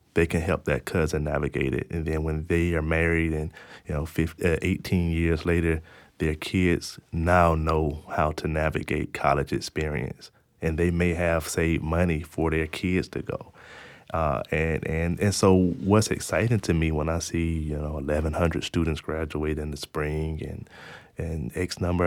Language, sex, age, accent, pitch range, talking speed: English, male, 20-39, American, 80-90 Hz, 175 wpm